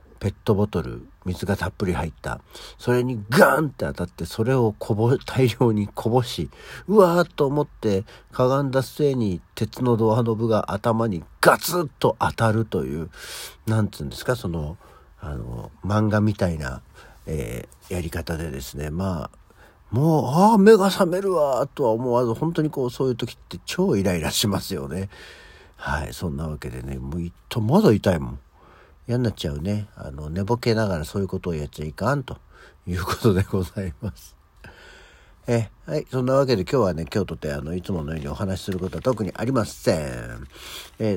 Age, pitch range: 50-69, 85-125 Hz